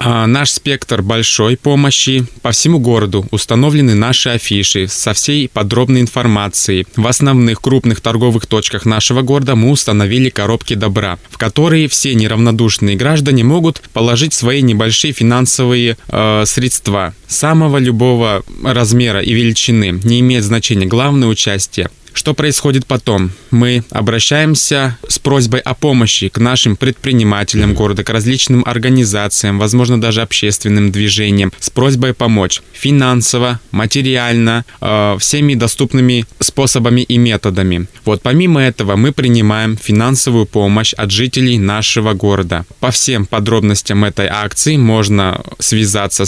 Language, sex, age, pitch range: Russian, male, 20-39, 105-130 Hz